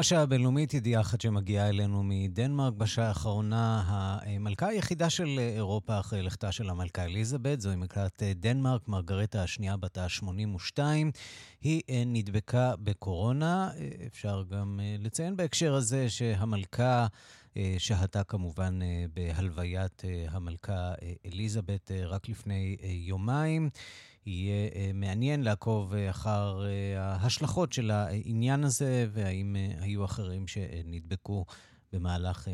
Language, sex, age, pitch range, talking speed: Hebrew, male, 30-49, 95-120 Hz, 100 wpm